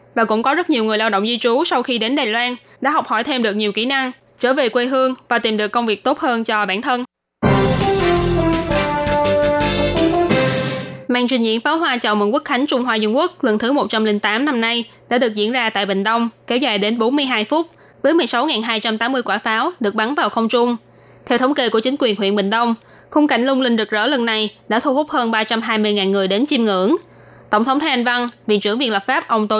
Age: 20-39